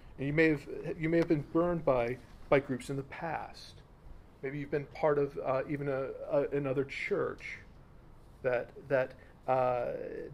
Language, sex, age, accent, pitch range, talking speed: English, male, 40-59, American, 135-160 Hz, 165 wpm